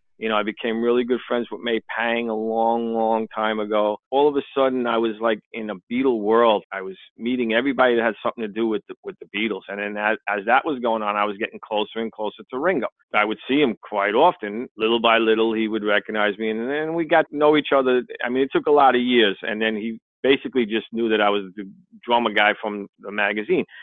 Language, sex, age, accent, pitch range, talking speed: English, male, 40-59, American, 110-130 Hz, 250 wpm